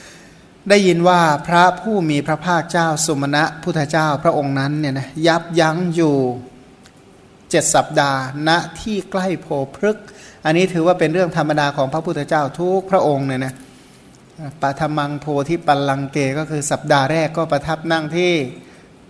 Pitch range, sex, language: 135-165 Hz, male, Thai